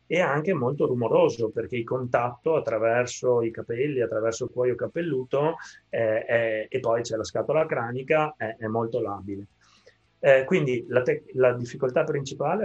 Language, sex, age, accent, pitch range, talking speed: Italian, male, 30-49, native, 115-155 Hz, 155 wpm